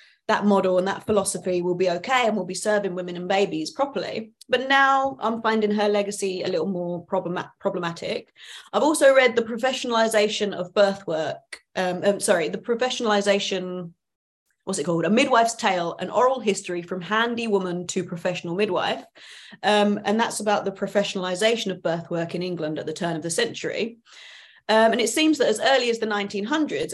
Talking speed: 185 wpm